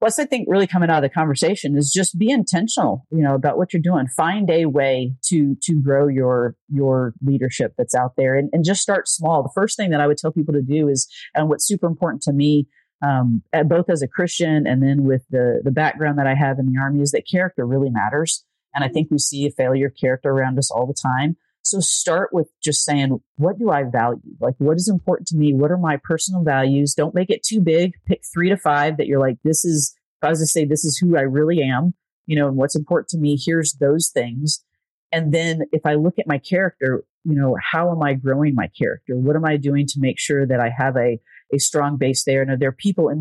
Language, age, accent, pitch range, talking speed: English, 30-49, American, 135-165 Hz, 250 wpm